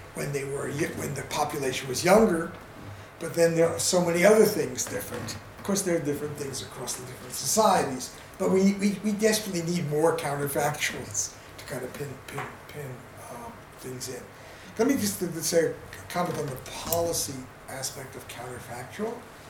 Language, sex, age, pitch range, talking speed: English, male, 60-79, 110-160 Hz, 175 wpm